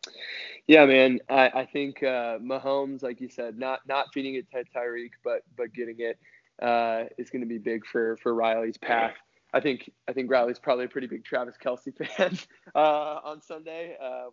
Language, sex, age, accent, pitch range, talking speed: English, male, 20-39, American, 120-145 Hz, 195 wpm